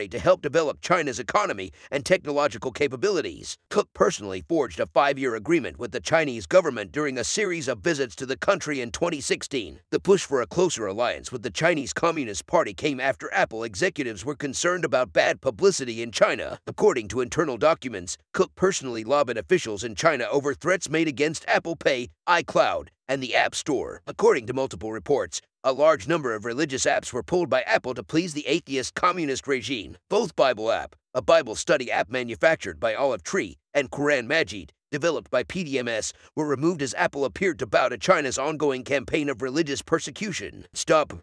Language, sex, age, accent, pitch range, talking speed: English, male, 50-69, American, 125-165 Hz, 180 wpm